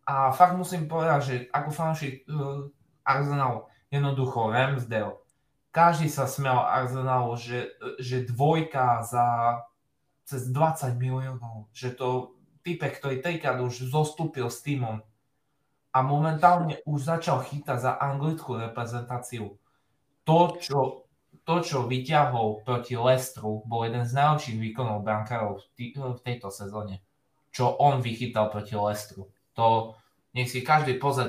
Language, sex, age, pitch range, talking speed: Slovak, male, 20-39, 110-140 Hz, 120 wpm